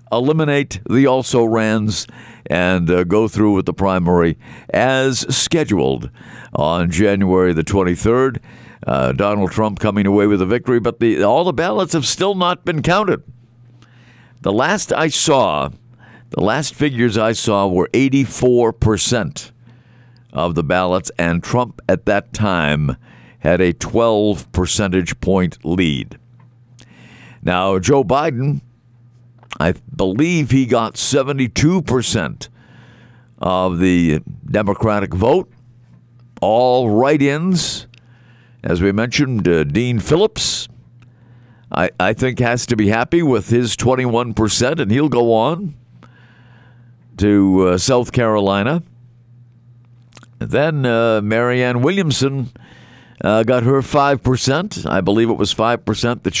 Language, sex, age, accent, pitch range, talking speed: English, male, 50-69, American, 100-125 Hz, 125 wpm